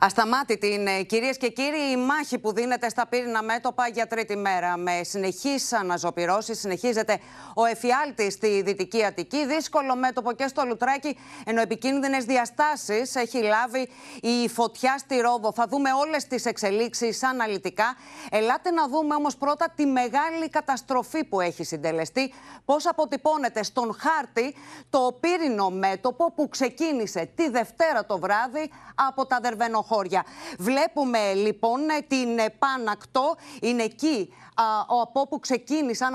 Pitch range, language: 215-270 Hz, Greek